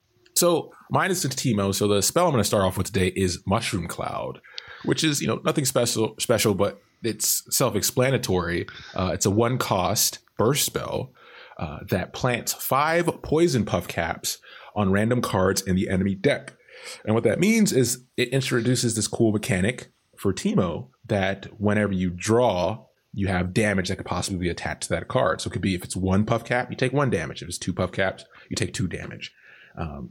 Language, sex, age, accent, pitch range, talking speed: English, male, 30-49, American, 95-120 Hz, 195 wpm